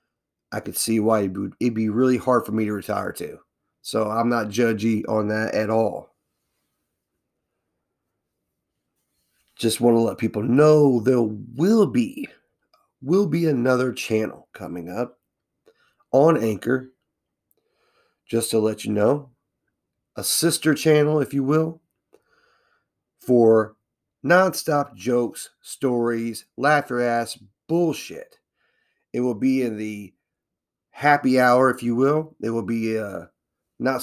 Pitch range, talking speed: 110-140 Hz, 130 wpm